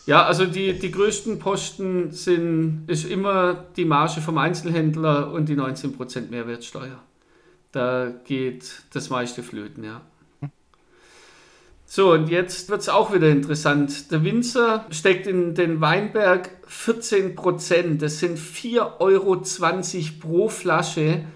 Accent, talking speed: German, 125 wpm